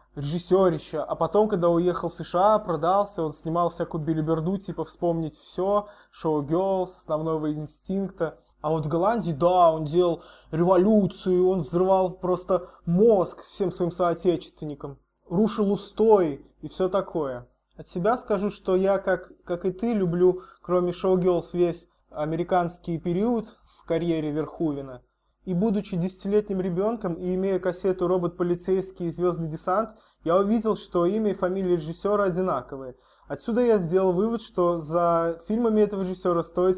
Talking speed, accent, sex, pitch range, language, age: 145 wpm, native, male, 165-195 Hz, Russian, 20-39